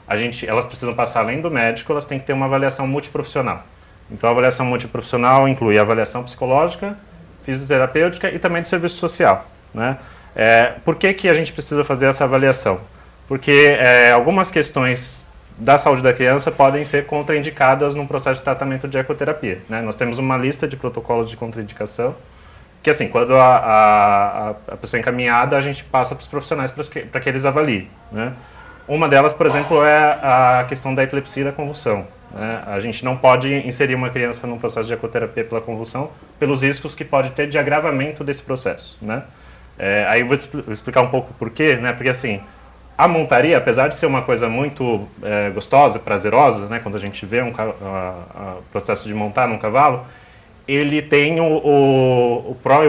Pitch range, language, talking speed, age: 115-145 Hz, Portuguese, 190 wpm, 30-49